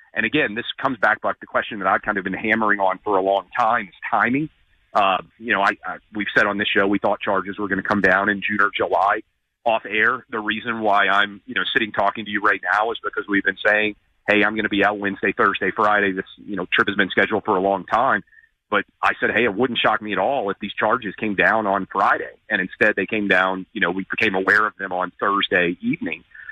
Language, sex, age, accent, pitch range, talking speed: English, male, 40-59, American, 95-110 Hz, 260 wpm